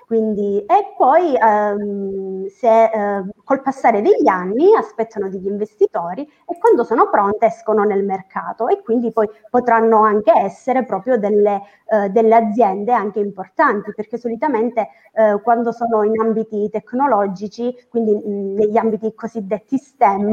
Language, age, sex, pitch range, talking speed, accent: Italian, 20-39, female, 210-260 Hz, 140 wpm, native